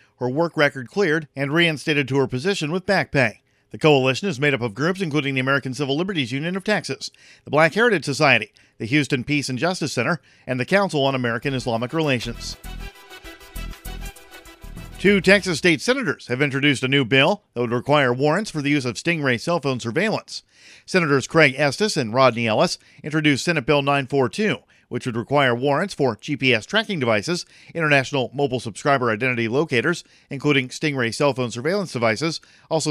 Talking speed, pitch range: 175 wpm, 125-165 Hz